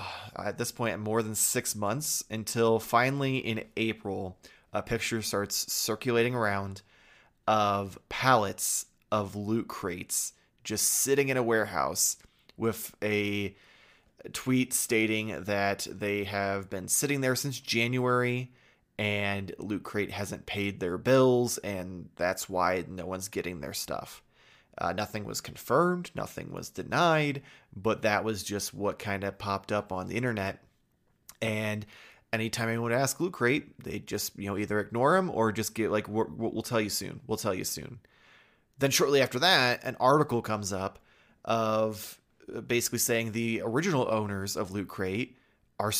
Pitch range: 100-120 Hz